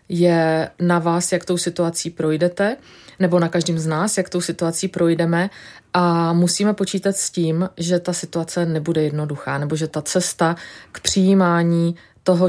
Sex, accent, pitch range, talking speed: female, native, 160-175 Hz, 160 wpm